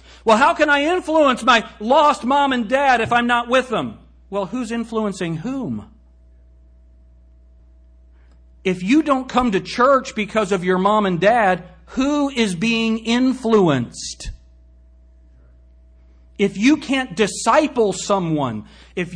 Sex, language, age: male, English, 50-69